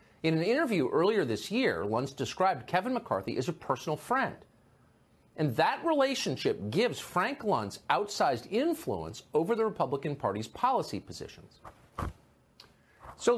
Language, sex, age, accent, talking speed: English, male, 50-69, American, 130 wpm